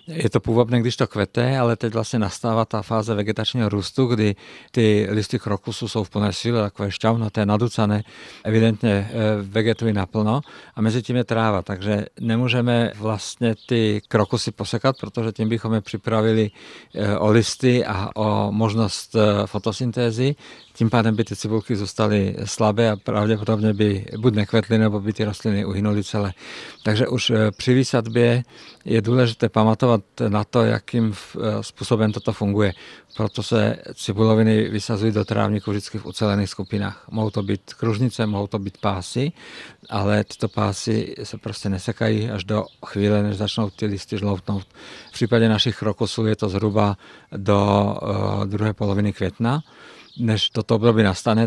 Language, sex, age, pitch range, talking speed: Czech, male, 50-69, 105-115 Hz, 150 wpm